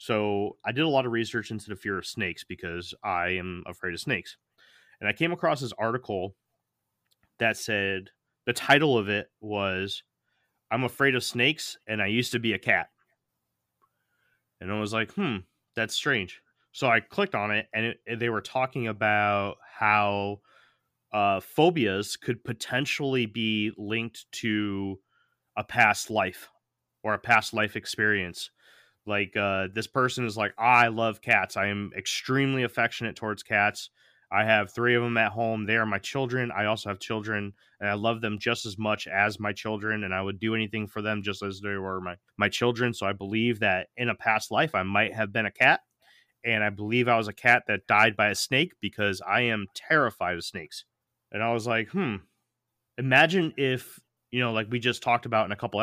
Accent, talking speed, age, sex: American, 190 wpm, 30-49, male